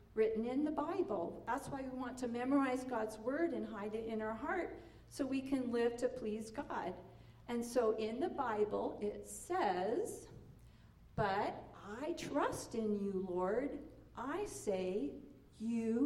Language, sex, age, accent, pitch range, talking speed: English, female, 50-69, American, 210-260 Hz, 155 wpm